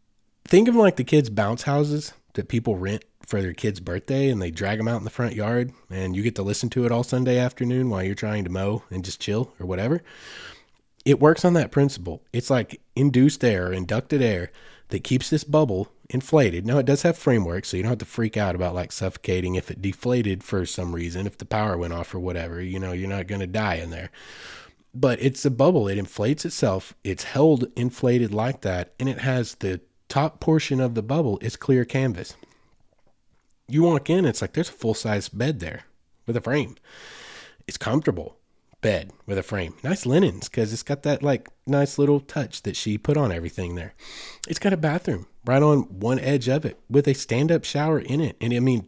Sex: male